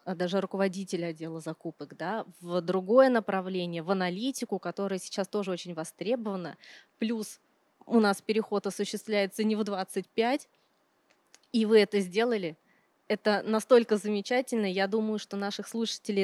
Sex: female